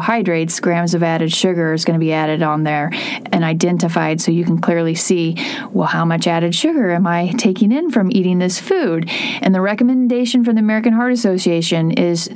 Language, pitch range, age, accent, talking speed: English, 170-225 Hz, 30-49, American, 195 wpm